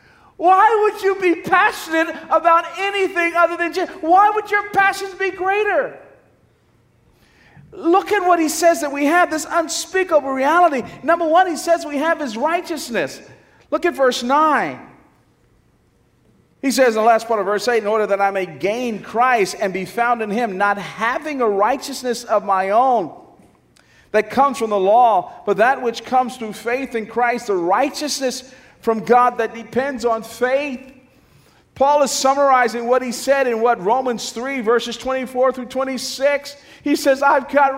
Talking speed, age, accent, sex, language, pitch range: 170 wpm, 40-59, American, male, English, 245-310 Hz